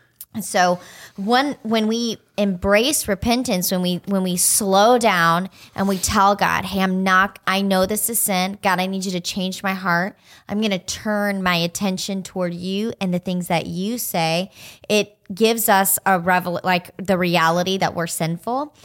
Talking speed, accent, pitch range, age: 180 wpm, American, 180-210 Hz, 20-39